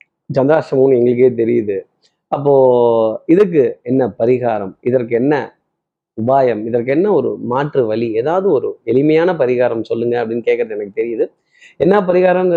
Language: Tamil